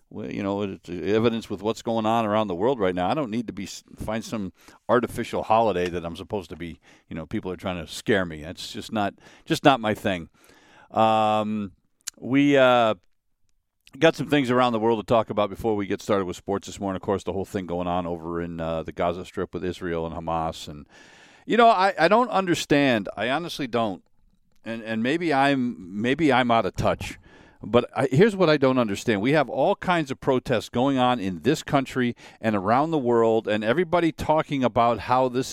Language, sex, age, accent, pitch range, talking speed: English, male, 50-69, American, 100-145 Hz, 215 wpm